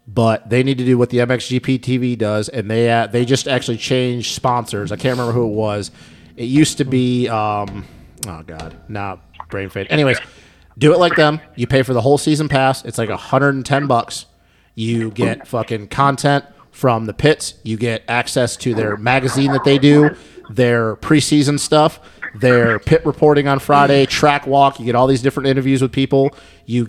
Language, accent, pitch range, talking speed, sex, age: English, American, 115-140 Hz, 190 wpm, male, 30-49